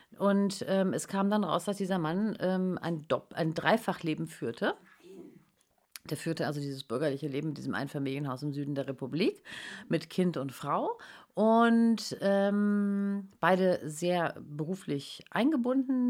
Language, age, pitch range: German, 40-59, 160-205 Hz